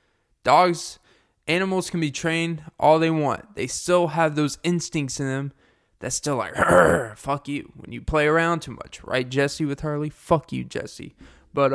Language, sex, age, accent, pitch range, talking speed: English, male, 20-39, American, 130-185 Hz, 175 wpm